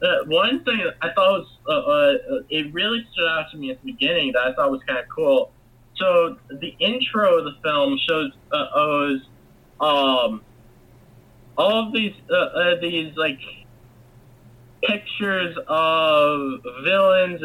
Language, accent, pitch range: English, American, 130-195 Hz